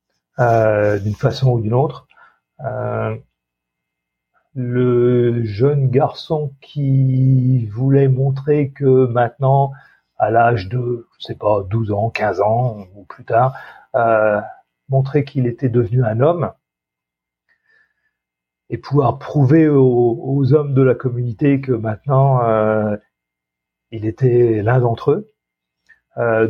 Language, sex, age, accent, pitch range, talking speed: French, male, 40-59, French, 85-135 Hz, 120 wpm